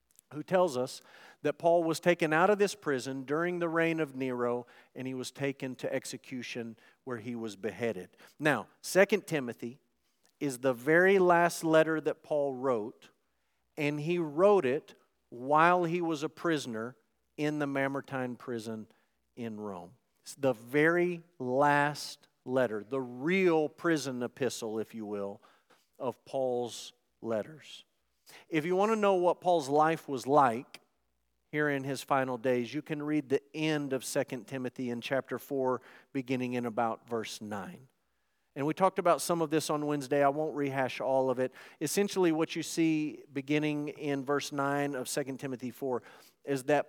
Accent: American